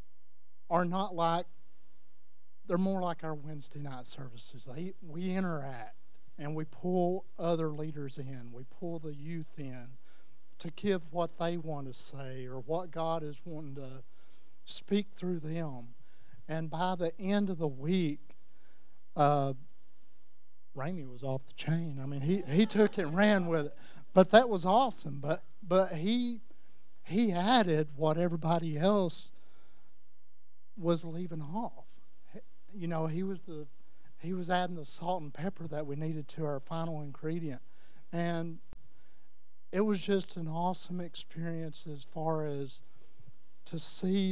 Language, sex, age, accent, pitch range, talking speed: English, male, 50-69, American, 130-170 Hz, 150 wpm